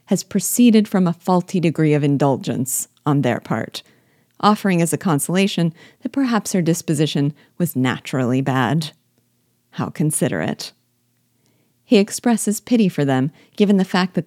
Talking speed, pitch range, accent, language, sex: 140 wpm, 145-190 Hz, American, English, female